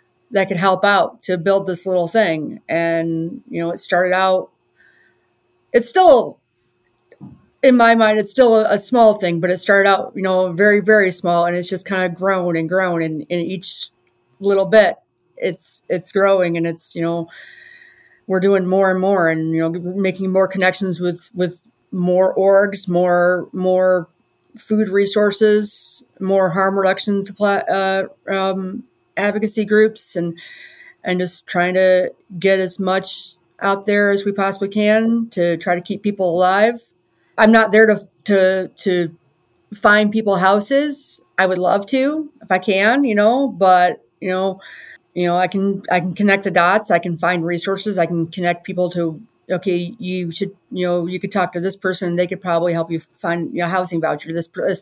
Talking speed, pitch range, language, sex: 180 wpm, 175-205 Hz, English, female